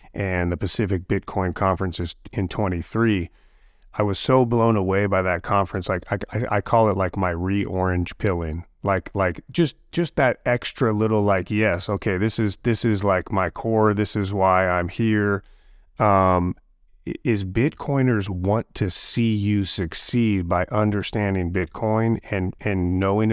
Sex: male